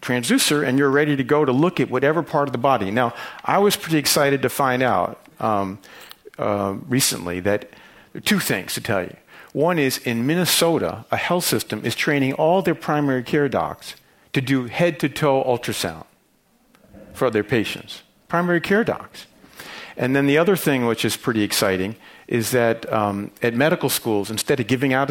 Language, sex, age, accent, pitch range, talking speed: English, male, 50-69, American, 110-145 Hz, 175 wpm